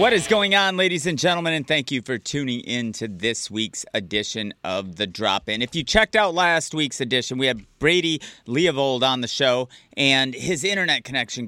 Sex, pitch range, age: male, 110-140 Hz, 30-49